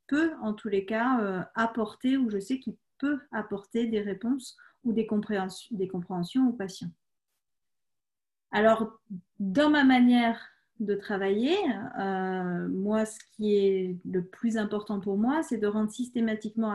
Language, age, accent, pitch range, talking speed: French, 40-59, French, 195-240 Hz, 150 wpm